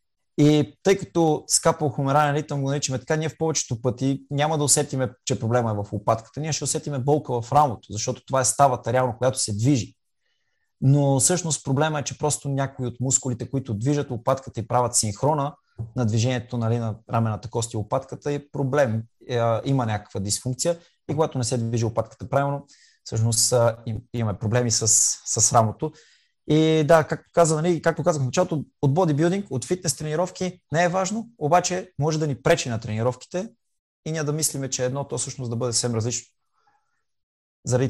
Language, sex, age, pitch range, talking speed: Bulgarian, male, 20-39, 115-150 Hz, 180 wpm